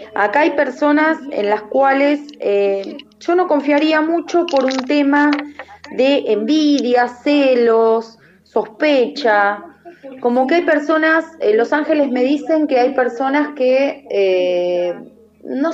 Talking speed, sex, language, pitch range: 125 wpm, female, Spanish, 210-270 Hz